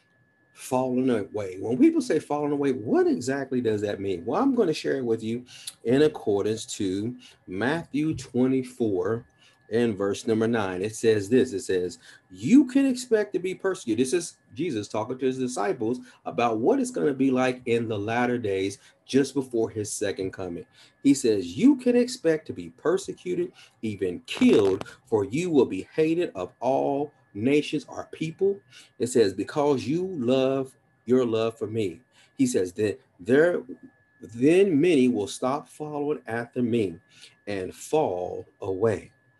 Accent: American